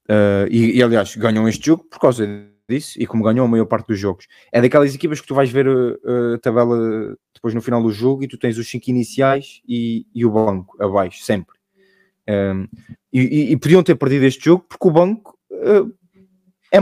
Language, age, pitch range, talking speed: Portuguese, 20-39, 110-135 Hz, 195 wpm